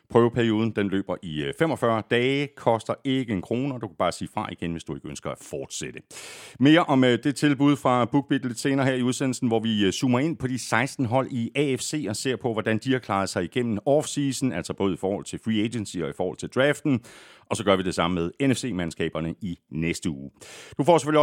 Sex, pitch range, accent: male, 100-135 Hz, native